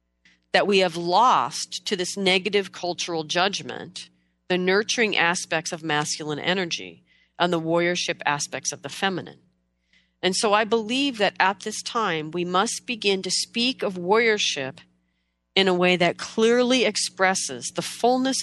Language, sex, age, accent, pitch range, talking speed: English, female, 40-59, American, 150-200 Hz, 145 wpm